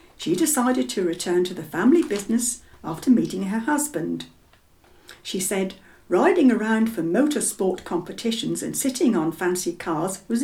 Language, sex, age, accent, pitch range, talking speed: English, female, 60-79, British, 180-260 Hz, 145 wpm